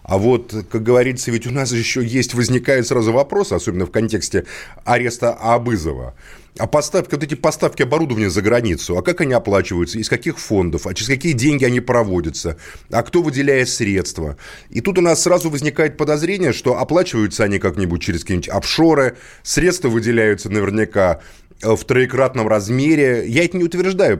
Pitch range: 105-150 Hz